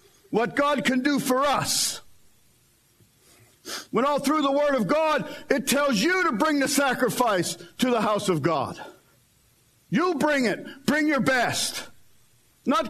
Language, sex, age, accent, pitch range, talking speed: English, male, 50-69, American, 215-320 Hz, 150 wpm